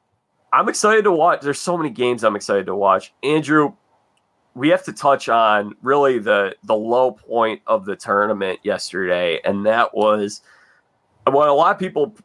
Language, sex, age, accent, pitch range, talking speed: English, male, 30-49, American, 105-135 Hz, 170 wpm